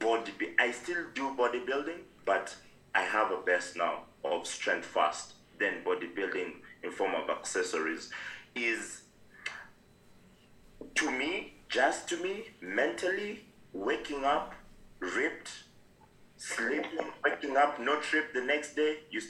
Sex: male